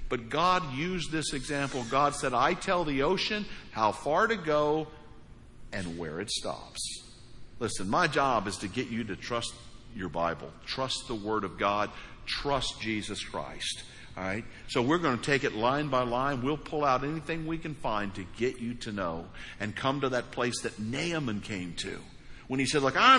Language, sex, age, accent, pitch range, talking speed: English, male, 60-79, American, 110-145 Hz, 190 wpm